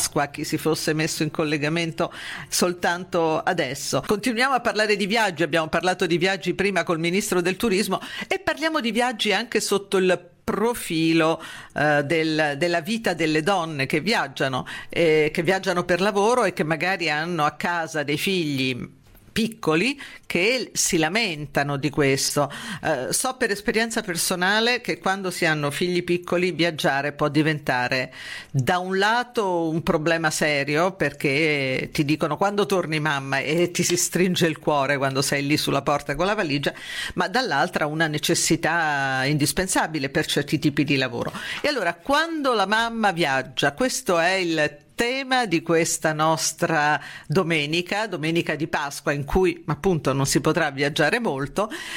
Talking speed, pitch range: 150 wpm, 150-190 Hz